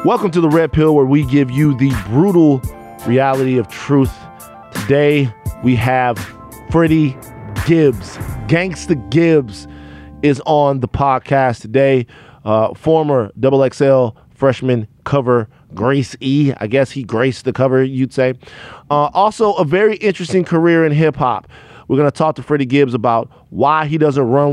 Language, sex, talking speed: English, male, 150 wpm